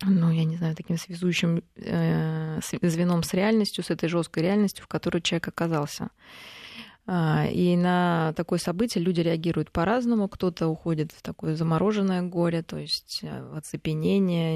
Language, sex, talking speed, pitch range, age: Russian, female, 140 wpm, 160-180 Hz, 20-39